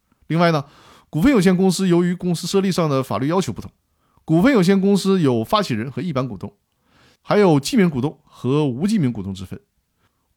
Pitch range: 120-180 Hz